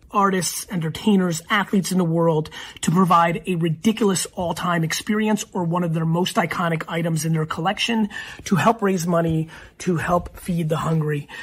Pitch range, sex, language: 165-190 Hz, male, English